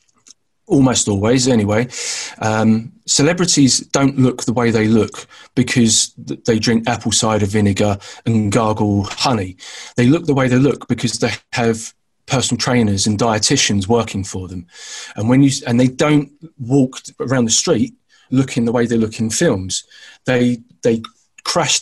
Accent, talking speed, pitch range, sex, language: British, 155 wpm, 110-135 Hz, male, English